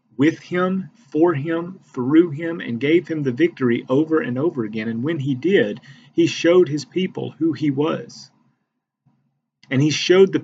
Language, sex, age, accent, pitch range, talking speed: English, male, 40-59, American, 120-155 Hz, 170 wpm